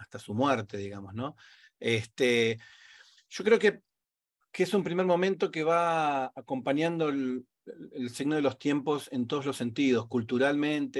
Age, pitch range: 40-59, 115-140 Hz